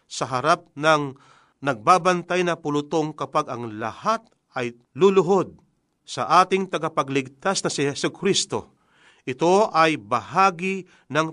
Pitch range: 135-180 Hz